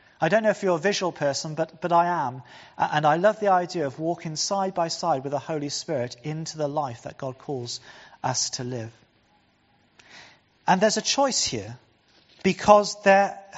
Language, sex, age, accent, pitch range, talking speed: English, male, 40-59, British, 160-210 Hz, 180 wpm